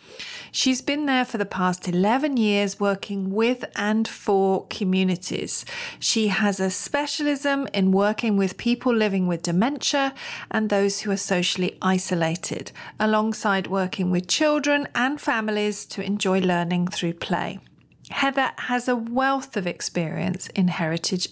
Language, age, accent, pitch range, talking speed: English, 40-59, British, 190-250 Hz, 140 wpm